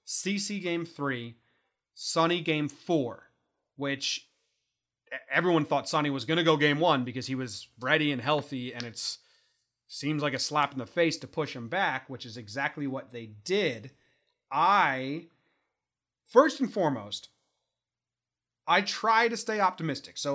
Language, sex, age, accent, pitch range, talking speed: English, male, 30-49, American, 135-180 Hz, 150 wpm